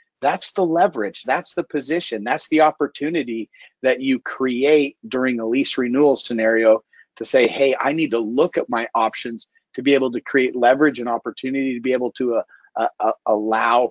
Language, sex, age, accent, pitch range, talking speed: English, male, 40-59, American, 120-165 Hz, 180 wpm